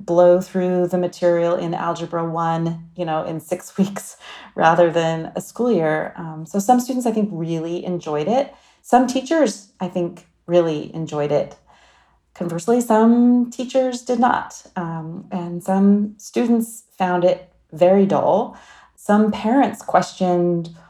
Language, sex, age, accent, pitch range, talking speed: English, female, 30-49, American, 160-200 Hz, 140 wpm